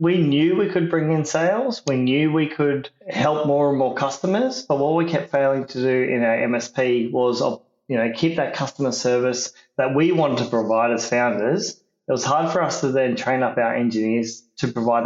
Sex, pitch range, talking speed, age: male, 120-145 Hz, 210 wpm, 20-39